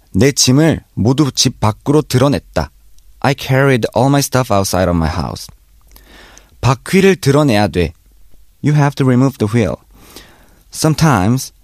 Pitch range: 95-140 Hz